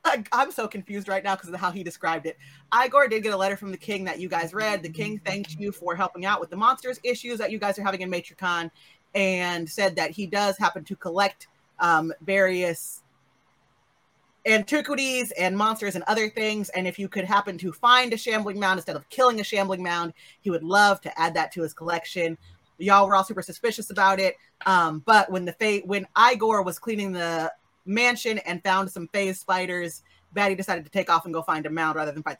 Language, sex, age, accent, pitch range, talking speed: English, female, 30-49, American, 175-215 Hz, 220 wpm